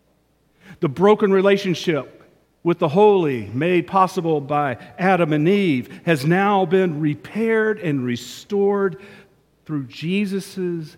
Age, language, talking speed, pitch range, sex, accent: 50-69, English, 110 wpm, 150-210 Hz, male, American